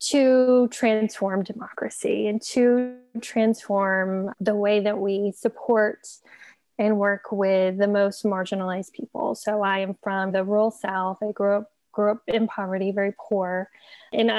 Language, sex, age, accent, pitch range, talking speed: English, female, 20-39, American, 200-235 Hz, 140 wpm